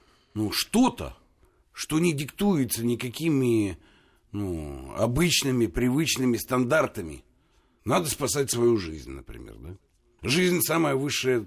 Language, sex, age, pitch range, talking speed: Russian, male, 60-79, 100-155 Hz, 95 wpm